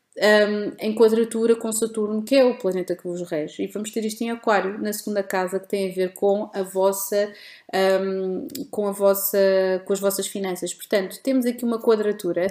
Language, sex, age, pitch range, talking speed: Portuguese, female, 20-39, 185-210 Hz, 175 wpm